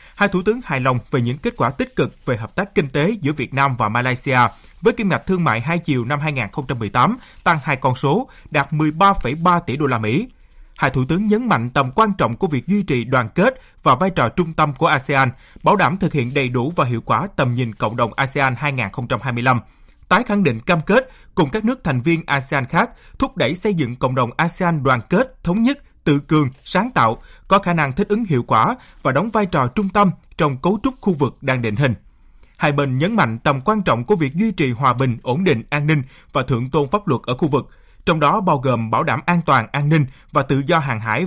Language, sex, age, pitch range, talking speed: Vietnamese, male, 20-39, 130-190 Hz, 240 wpm